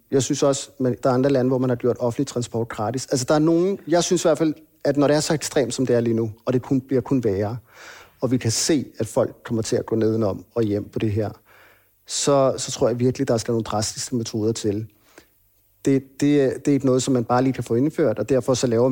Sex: male